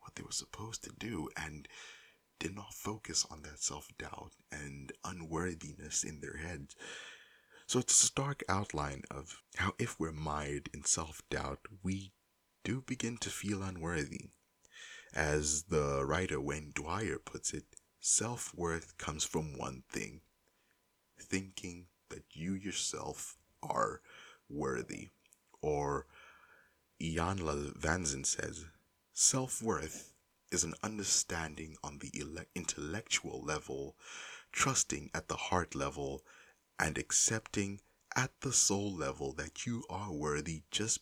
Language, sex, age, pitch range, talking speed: English, male, 30-49, 75-95 Hz, 120 wpm